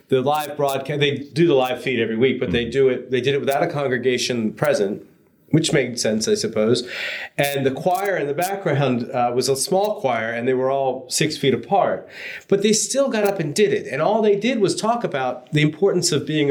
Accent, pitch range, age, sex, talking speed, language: American, 130-190 Hz, 30-49, male, 230 wpm, English